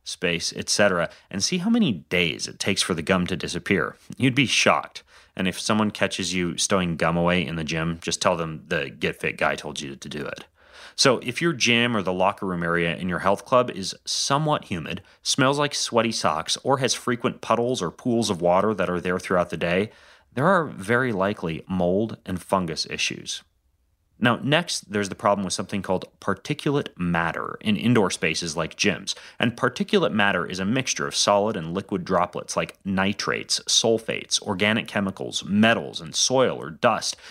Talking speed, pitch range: 190 wpm, 90-125 Hz